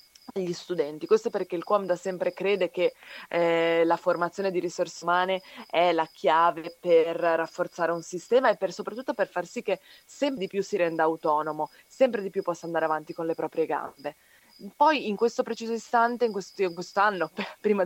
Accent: native